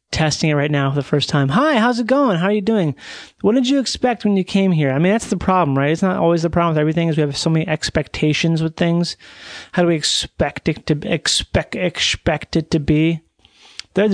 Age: 30-49